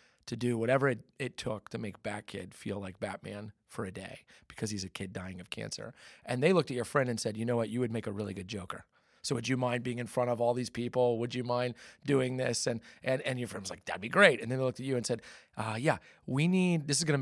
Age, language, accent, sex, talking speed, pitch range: 40-59, English, American, male, 285 wpm, 105-130 Hz